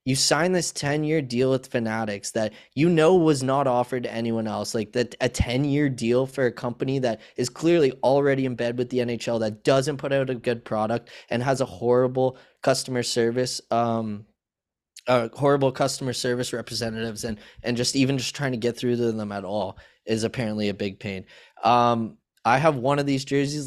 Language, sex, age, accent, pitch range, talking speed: English, male, 20-39, American, 110-130 Hz, 195 wpm